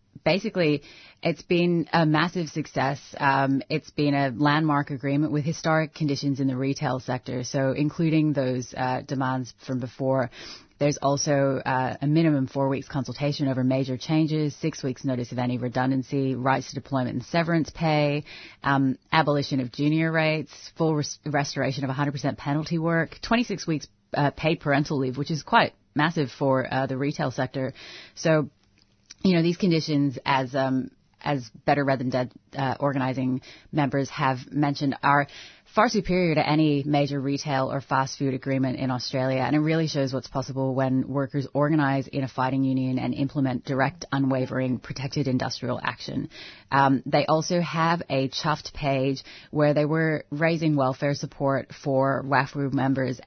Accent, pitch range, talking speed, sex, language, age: American, 130-150 Hz, 160 wpm, female, English, 30-49